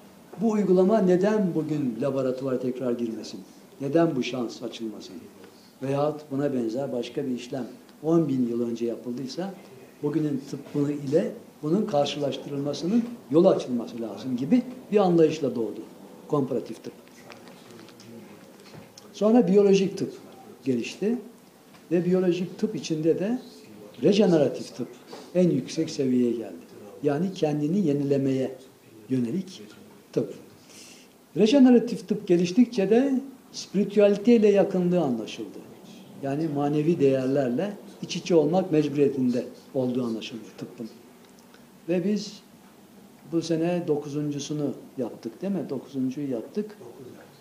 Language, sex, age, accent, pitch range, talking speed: Turkish, male, 60-79, native, 135-200 Hz, 105 wpm